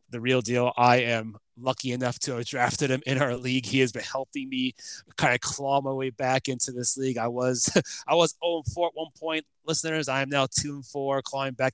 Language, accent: English, American